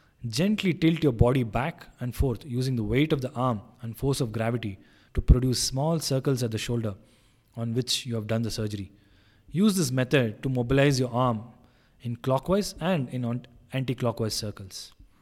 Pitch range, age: 115-135 Hz, 20-39